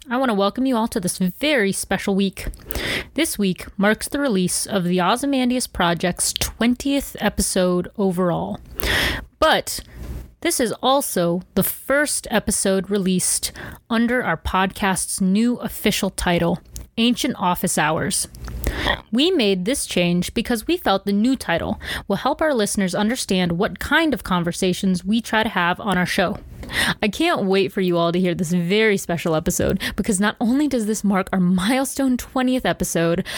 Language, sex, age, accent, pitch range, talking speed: English, female, 20-39, American, 180-235 Hz, 160 wpm